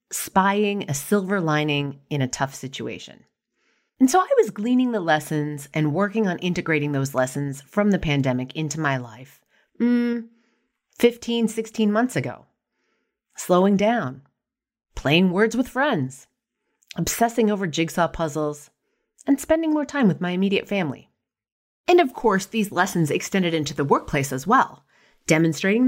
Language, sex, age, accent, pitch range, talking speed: English, female, 30-49, American, 150-235 Hz, 145 wpm